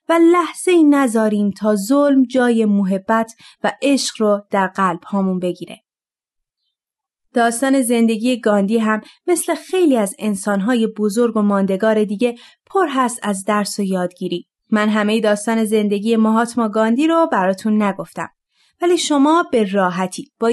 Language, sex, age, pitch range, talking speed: Persian, female, 30-49, 210-285 Hz, 135 wpm